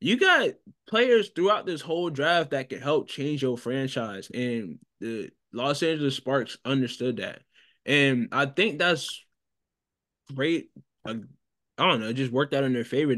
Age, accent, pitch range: 20-39, American, 115-145 Hz